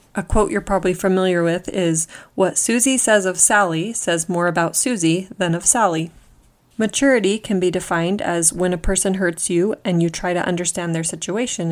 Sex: female